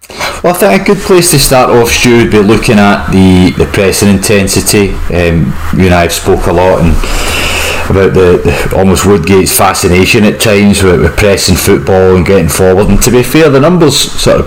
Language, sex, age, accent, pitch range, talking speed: English, male, 30-49, British, 85-105 Hz, 205 wpm